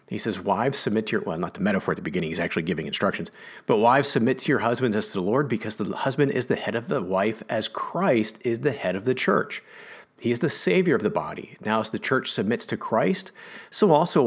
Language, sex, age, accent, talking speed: English, male, 40-59, American, 250 wpm